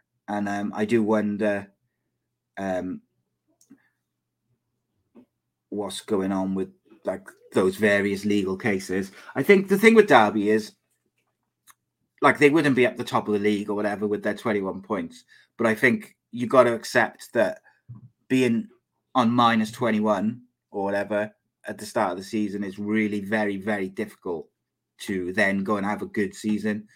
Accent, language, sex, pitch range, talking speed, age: British, English, male, 100-125 Hz, 160 wpm, 30-49